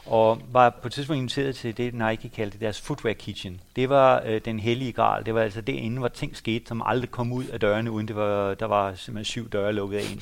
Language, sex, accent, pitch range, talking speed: Danish, male, native, 110-150 Hz, 260 wpm